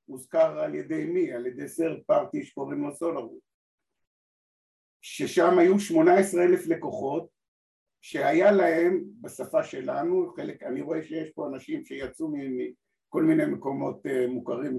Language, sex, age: Hebrew, male, 50-69